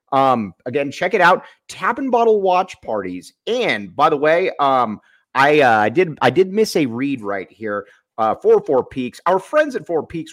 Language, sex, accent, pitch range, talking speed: English, male, American, 145-235 Hz, 205 wpm